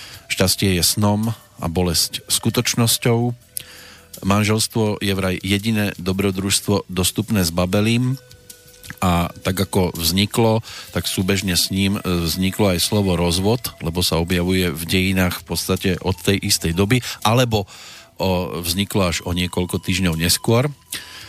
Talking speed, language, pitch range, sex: 125 wpm, Slovak, 90-115 Hz, male